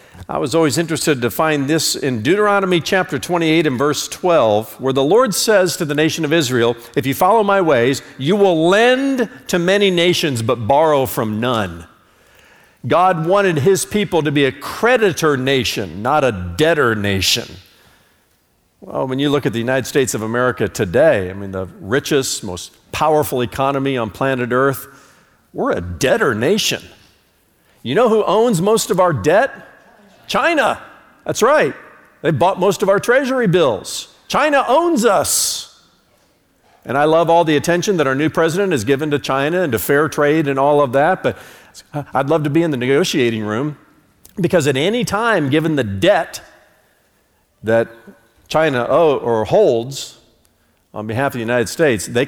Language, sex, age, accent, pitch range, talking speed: English, male, 50-69, American, 120-175 Hz, 170 wpm